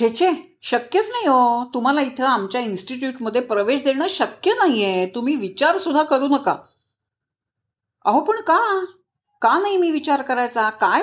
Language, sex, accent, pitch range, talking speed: Marathi, female, native, 200-305 Hz, 160 wpm